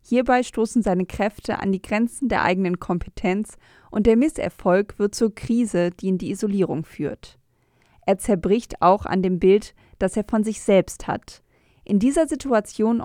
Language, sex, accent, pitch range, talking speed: German, female, German, 190-235 Hz, 165 wpm